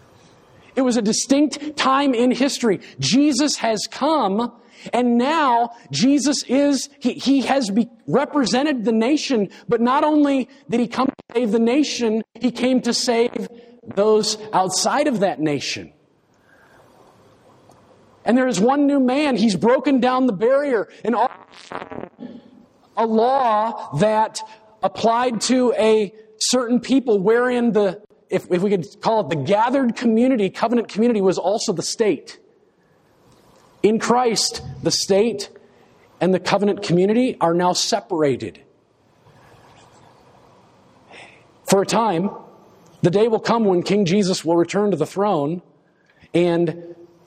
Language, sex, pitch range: English, male, 190-250 Hz